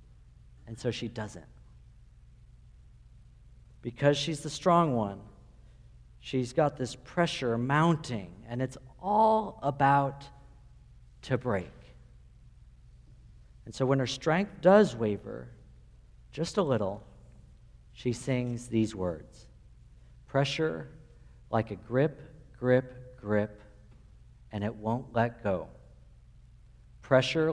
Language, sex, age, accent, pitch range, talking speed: English, male, 50-69, American, 115-150 Hz, 100 wpm